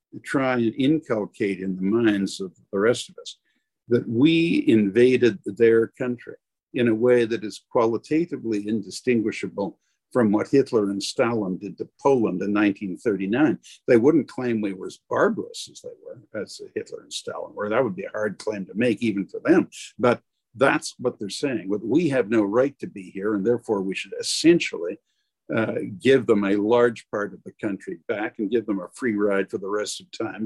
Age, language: 60-79, English